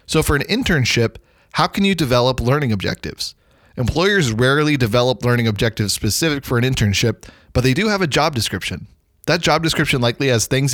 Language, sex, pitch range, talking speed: English, male, 110-140 Hz, 180 wpm